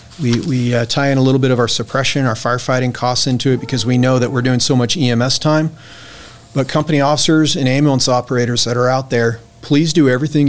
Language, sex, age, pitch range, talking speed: English, male, 40-59, 125-145 Hz, 225 wpm